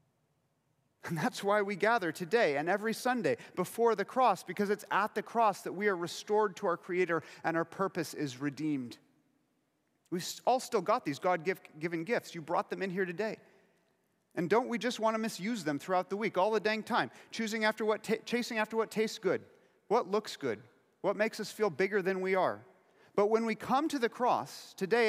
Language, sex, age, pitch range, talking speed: English, male, 30-49, 180-225 Hz, 205 wpm